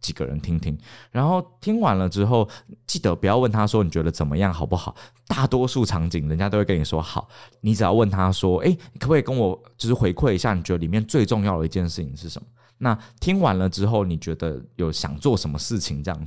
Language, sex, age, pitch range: Chinese, male, 20-39, 85-120 Hz